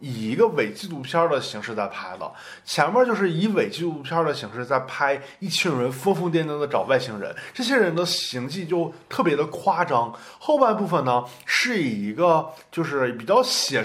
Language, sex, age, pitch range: Chinese, male, 20-39, 125-175 Hz